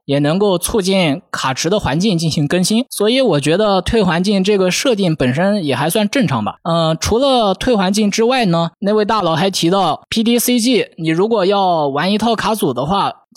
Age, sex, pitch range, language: 20-39, male, 145-200 Hz, Chinese